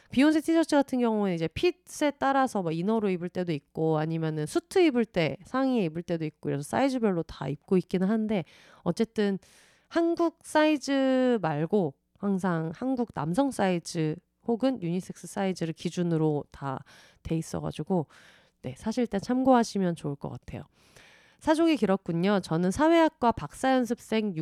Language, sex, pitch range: Korean, female, 175-265 Hz